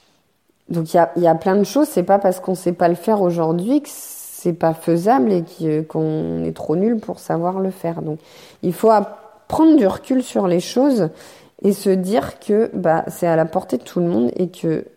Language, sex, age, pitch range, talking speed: French, female, 30-49, 165-215 Hz, 220 wpm